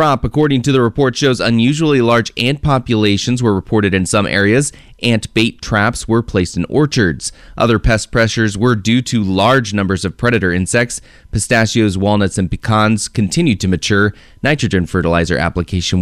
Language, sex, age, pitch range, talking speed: English, male, 20-39, 95-125 Hz, 155 wpm